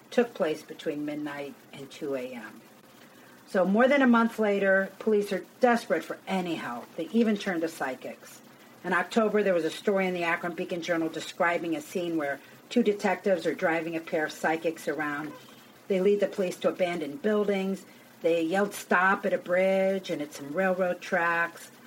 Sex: female